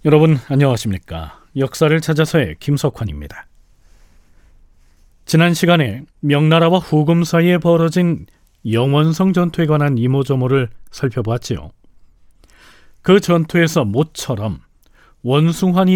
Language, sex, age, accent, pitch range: Korean, male, 40-59, native, 115-170 Hz